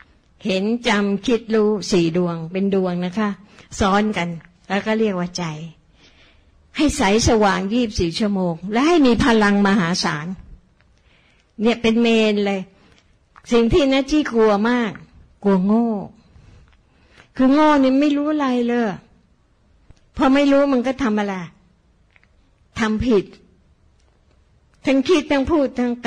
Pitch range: 185-240 Hz